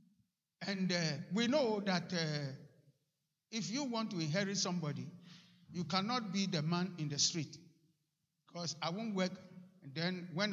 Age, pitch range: 50-69, 155-195 Hz